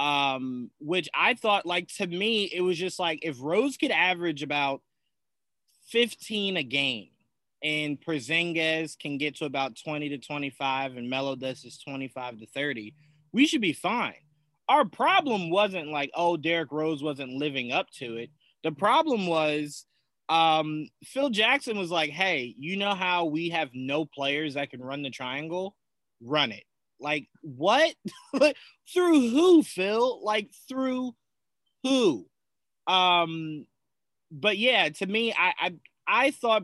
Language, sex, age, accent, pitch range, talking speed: English, male, 20-39, American, 135-180 Hz, 145 wpm